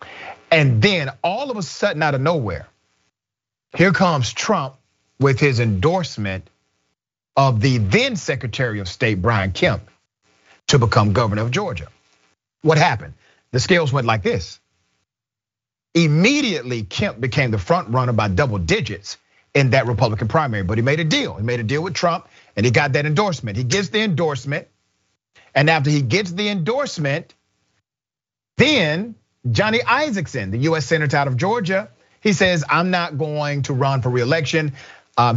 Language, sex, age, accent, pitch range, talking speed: English, male, 40-59, American, 110-160 Hz, 160 wpm